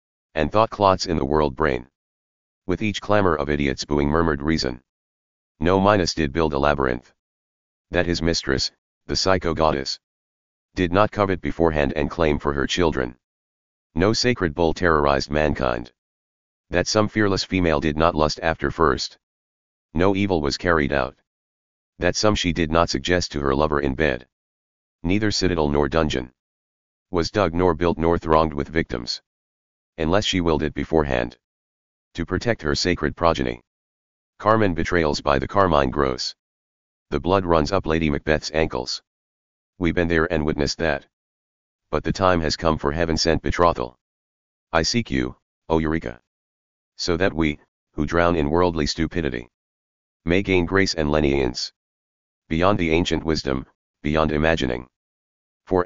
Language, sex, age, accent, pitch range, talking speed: English, male, 40-59, American, 65-85 Hz, 150 wpm